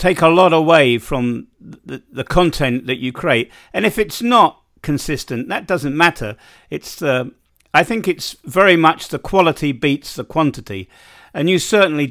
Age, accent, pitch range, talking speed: 50-69, British, 125-165 Hz, 170 wpm